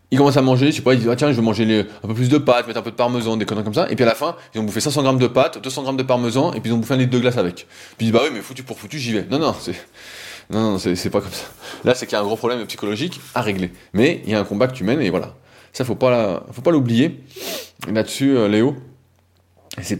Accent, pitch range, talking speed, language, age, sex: French, 95-130 Hz, 335 wpm, French, 20-39, male